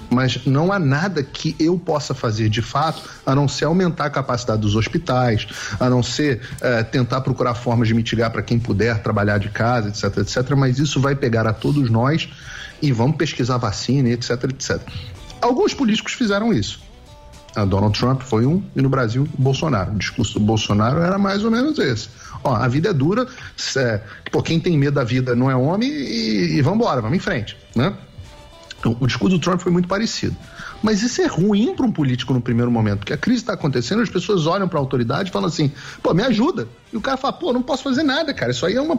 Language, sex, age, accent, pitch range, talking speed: English, male, 40-59, Brazilian, 125-200 Hz, 210 wpm